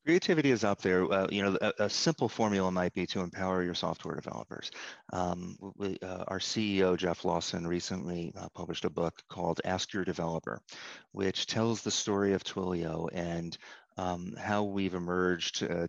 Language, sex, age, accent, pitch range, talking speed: English, male, 30-49, American, 90-100 Hz, 170 wpm